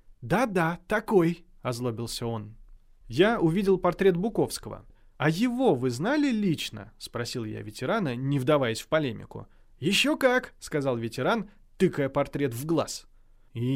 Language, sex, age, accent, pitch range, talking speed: Russian, male, 20-39, native, 115-175 Hz, 125 wpm